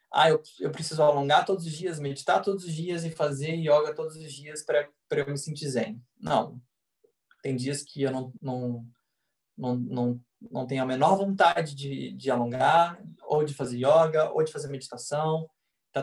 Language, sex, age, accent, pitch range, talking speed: Portuguese, male, 20-39, Brazilian, 130-160 Hz, 185 wpm